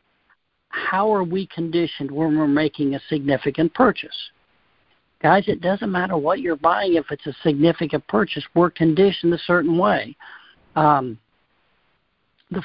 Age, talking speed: 60-79, 140 wpm